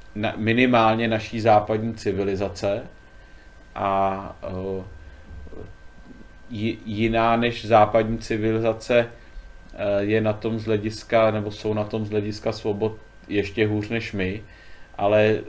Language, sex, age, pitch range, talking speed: Czech, male, 30-49, 100-120 Hz, 110 wpm